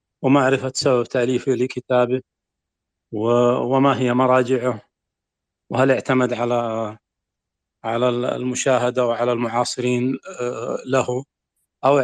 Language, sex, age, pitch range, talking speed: English, male, 40-59, 120-150 Hz, 85 wpm